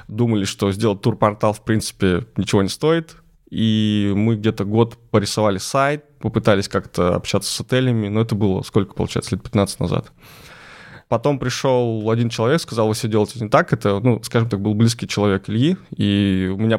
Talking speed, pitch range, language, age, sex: 175 wpm, 100-120 Hz, Russian, 20-39, male